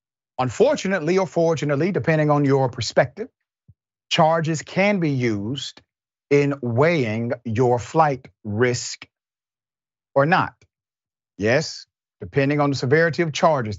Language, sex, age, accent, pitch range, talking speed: English, male, 40-59, American, 115-155 Hz, 110 wpm